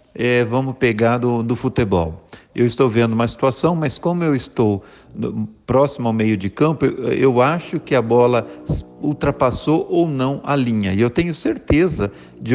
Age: 50-69